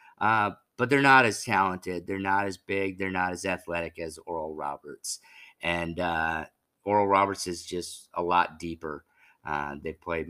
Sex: male